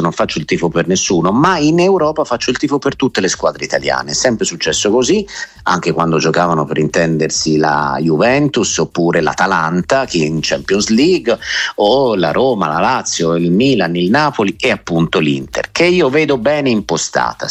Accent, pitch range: native, 85-140 Hz